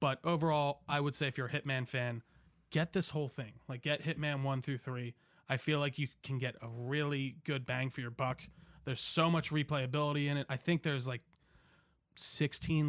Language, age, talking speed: English, 20-39, 205 wpm